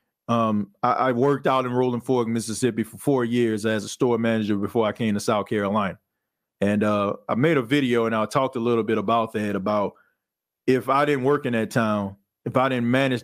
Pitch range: 110-130 Hz